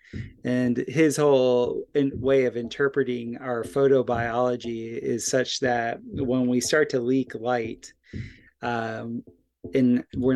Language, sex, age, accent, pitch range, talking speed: English, male, 30-49, American, 120-135 Hz, 115 wpm